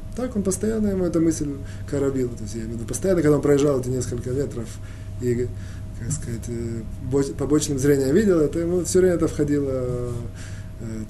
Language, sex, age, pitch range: Russian, male, 20-39, 100-160 Hz